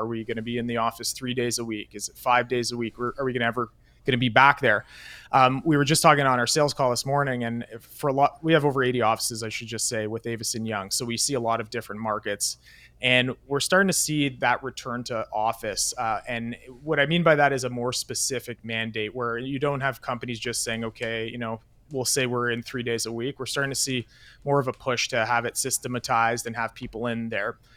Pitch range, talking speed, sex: 115-135 Hz, 255 wpm, male